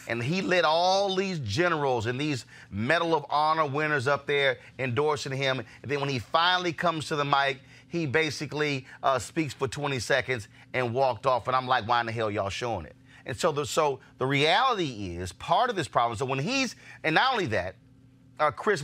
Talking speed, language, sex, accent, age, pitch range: 205 wpm, English, male, American, 30-49, 125-155 Hz